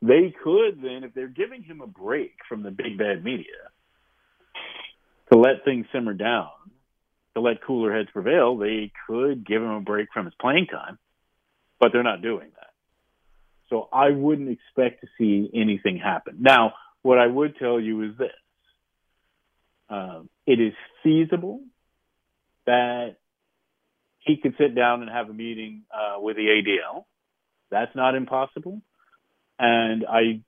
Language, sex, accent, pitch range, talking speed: English, male, American, 110-140 Hz, 150 wpm